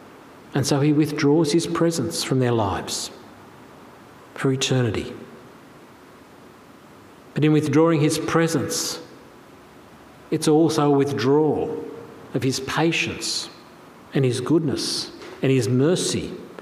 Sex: male